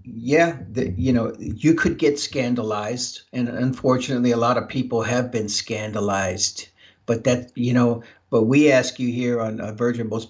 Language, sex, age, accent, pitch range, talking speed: English, male, 60-79, American, 120-150 Hz, 170 wpm